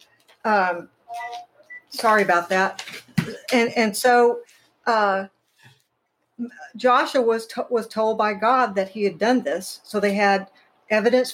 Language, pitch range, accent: English, 195-235 Hz, American